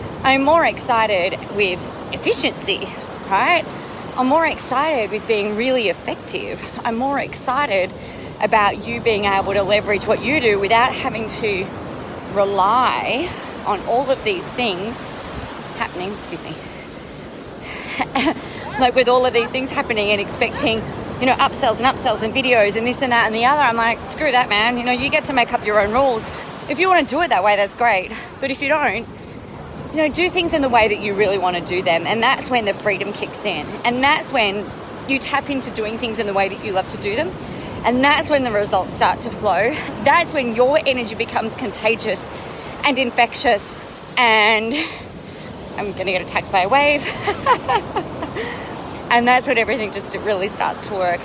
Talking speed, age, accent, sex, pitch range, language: 190 wpm, 30-49, Australian, female, 205-265 Hz, English